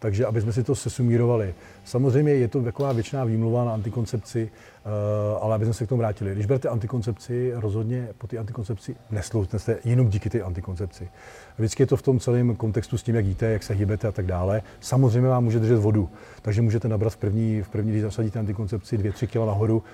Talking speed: 200 wpm